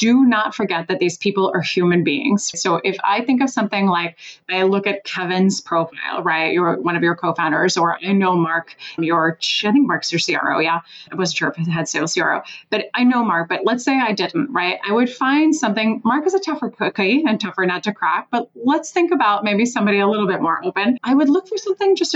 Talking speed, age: 235 wpm, 30-49